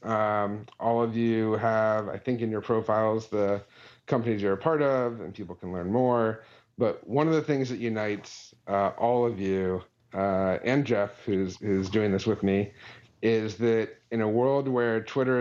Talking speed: 185 wpm